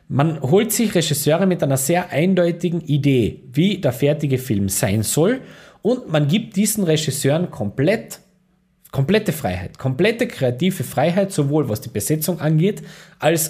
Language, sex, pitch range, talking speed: German, male, 135-185 Hz, 140 wpm